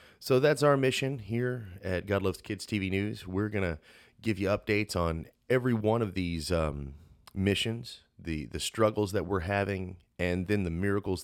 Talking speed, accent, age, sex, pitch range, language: 175 wpm, American, 30-49, male, 85-105 Hz, English